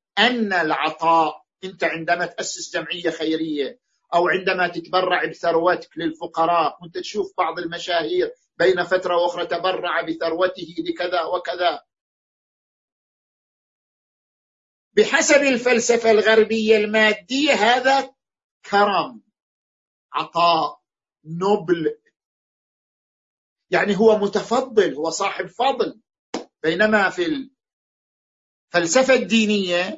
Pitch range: 180-245 Hz